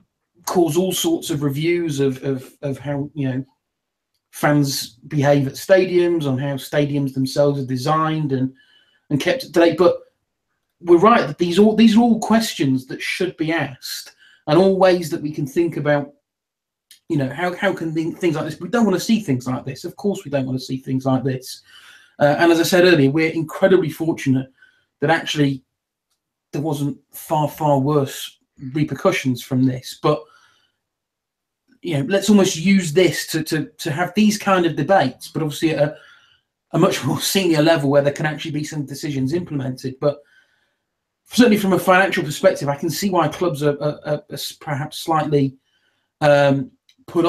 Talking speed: 185 wpm